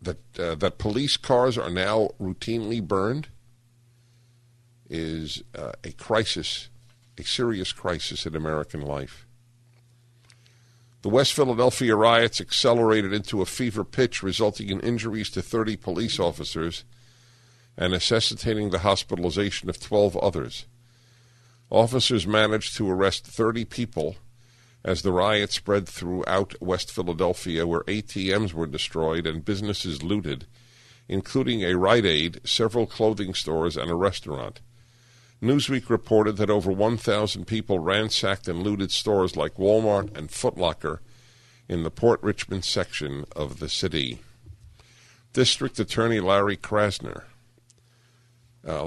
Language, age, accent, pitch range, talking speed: English, 50-69, American, 95-120 Hz, 125 wpm